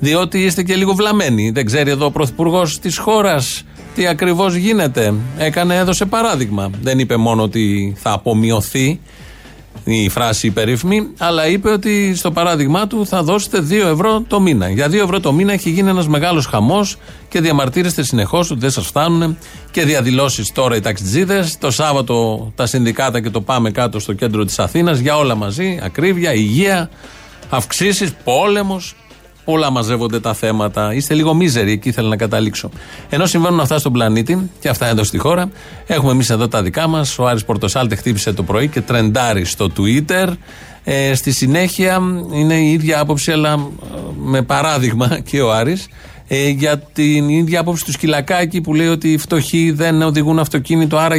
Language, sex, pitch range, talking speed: Greek, male, 115-170 Hz, 170 wpm